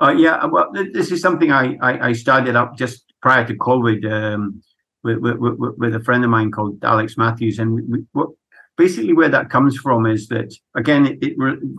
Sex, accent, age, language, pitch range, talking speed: male, British, 50-69, English, 110-125 Hz, 210 wpm